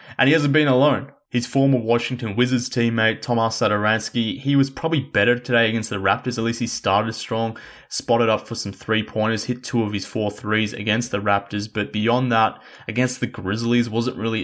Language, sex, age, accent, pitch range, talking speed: English, male, 20-39, Australian, 110-120 Hz, 195 wpm